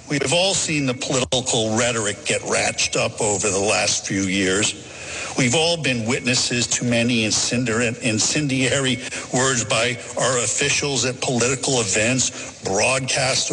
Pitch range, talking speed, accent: 110-140 Hz, 135 wpm, American